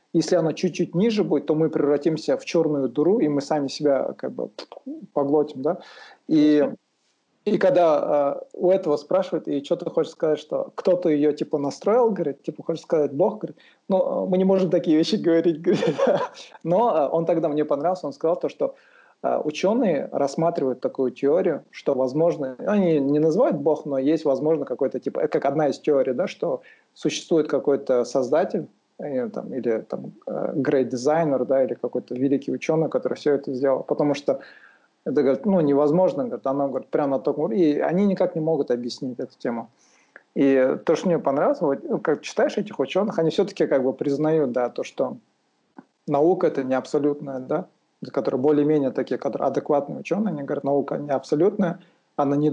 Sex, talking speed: male, 170 wpm